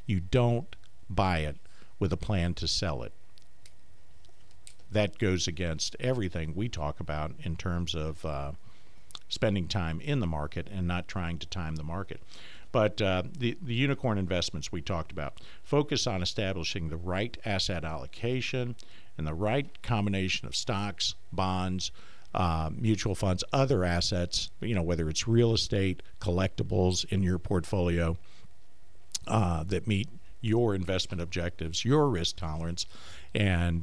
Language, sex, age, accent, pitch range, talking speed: English, male, 50-69, American, 85-110 Hz, 145 wpm